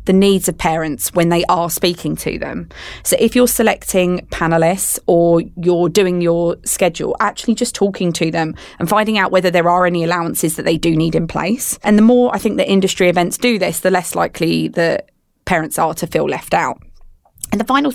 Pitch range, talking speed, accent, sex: 170-205 Hz, 205 wpm, British, female